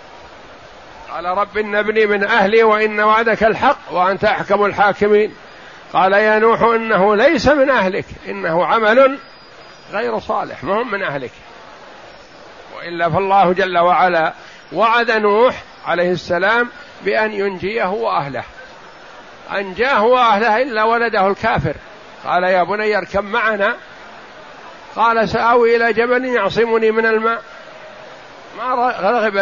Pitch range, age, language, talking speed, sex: 180-225 Hz, 60-79, Arabic, 110 wpm, male